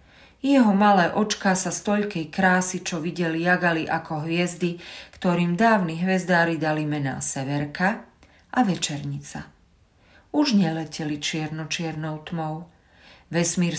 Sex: female